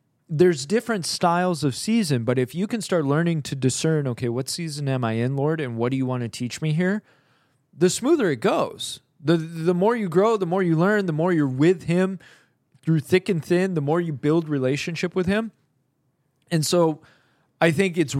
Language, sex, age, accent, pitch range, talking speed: English, male, 20-39, American, 130-170 Hz, 210 wpm